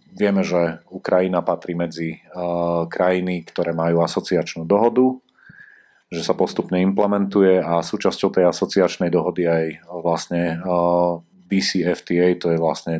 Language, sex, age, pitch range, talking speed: Slovak, male, 40-59, 85-95 Hz, 130 wpm